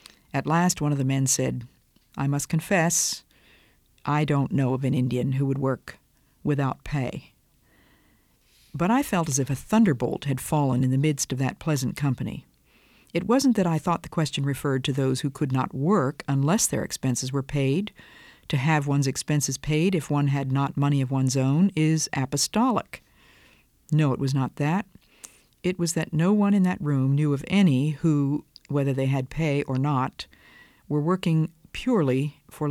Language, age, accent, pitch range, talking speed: English, 50-69, American, 135-165 Hz, 180 wpm